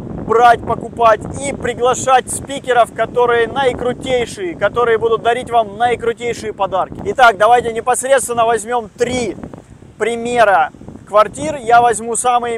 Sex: male